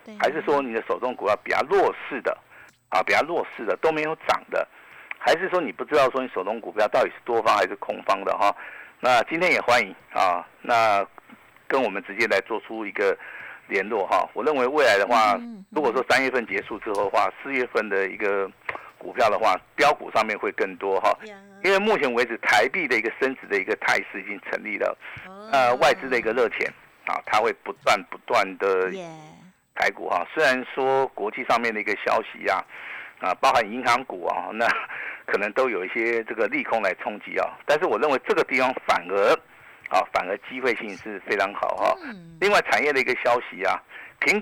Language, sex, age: Chinese, male, 50-69